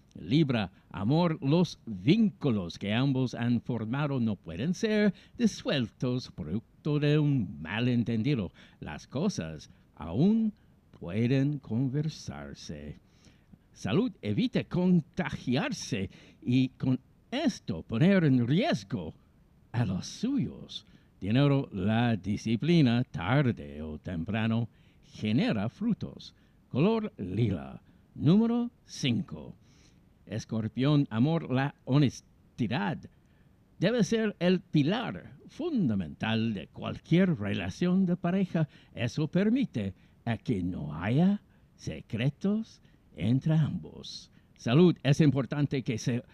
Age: 60-79